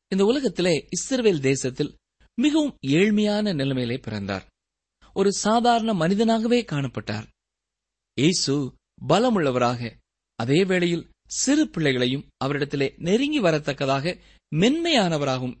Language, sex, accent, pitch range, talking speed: Tamil, male, native, 125-210 Hz, 80 wpm